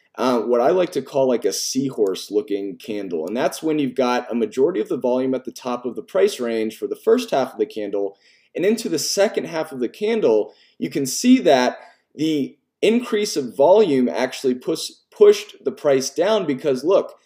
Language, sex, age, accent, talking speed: English, male, 30-49, American, 200 wpm